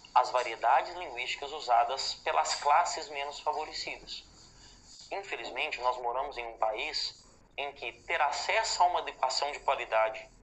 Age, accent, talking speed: 20-39, Brazilian, 130 wpm